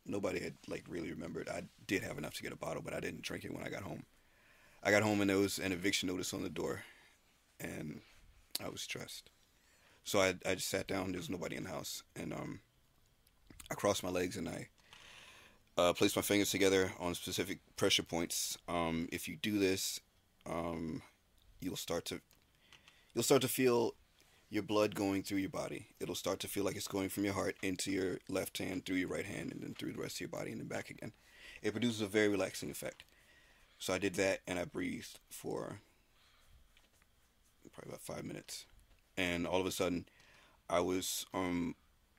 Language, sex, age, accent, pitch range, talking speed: English, male, 30-49, American, 85-100 Hz, 200 wpm